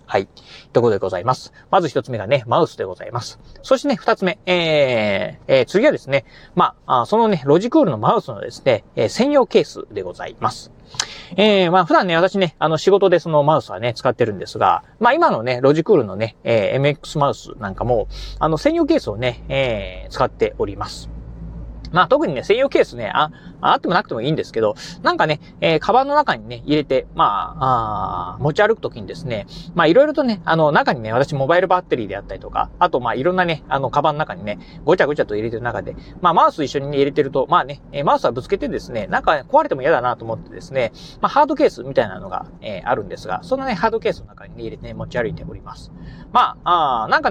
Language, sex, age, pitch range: Japanese, male, 30-49, 140-225 Hz